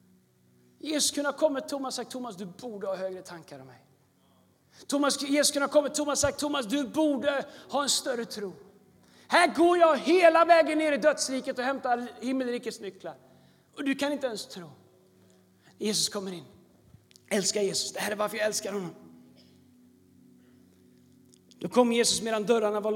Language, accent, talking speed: Swedish, native, 170 wpm